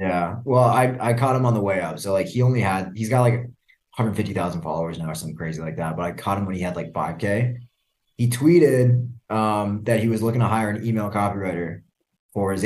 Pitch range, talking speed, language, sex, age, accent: 95-110 Hz, 230 wpm, English, male, 20-39, American